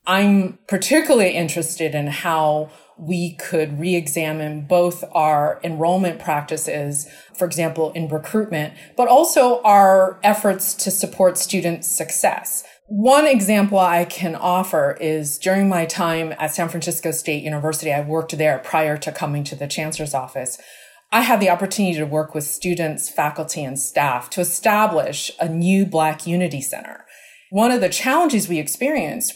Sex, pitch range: female, 155-195 Hz